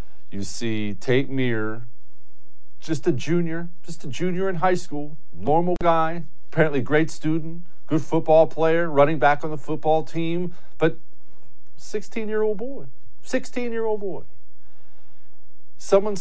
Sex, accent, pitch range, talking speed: male, American, 105-155 Hz, 120 wpm